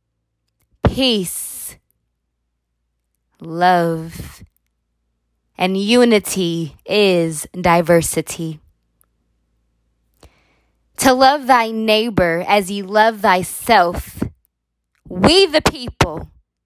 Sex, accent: female, American